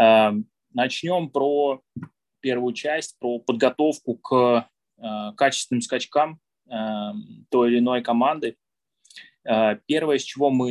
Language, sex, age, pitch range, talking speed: Russian, male, 20-39, 115-150 Hz, 95 wpm